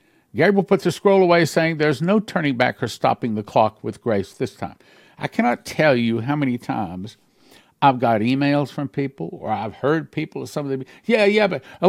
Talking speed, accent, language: 205 wpm, American, English